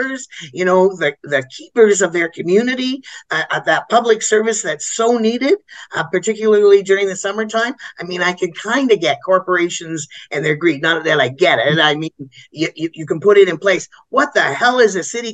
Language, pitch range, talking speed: English, 160-205 Hz, 205 wpm